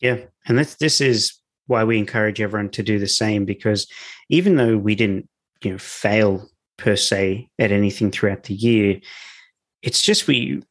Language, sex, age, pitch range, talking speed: English, male, 20-39, 105-120 Hz, 175 wpm